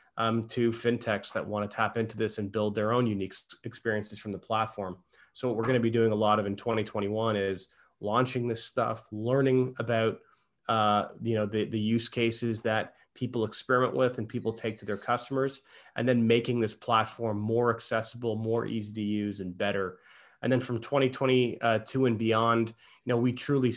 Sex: male